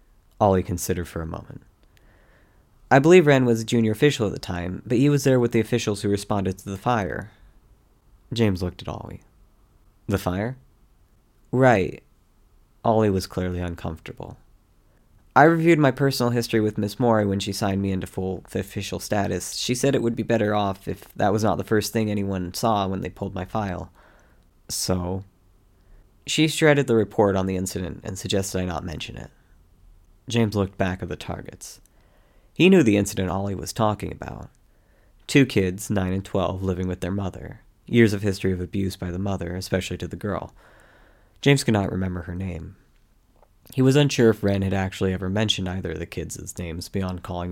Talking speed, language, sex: 185 wpm, English, male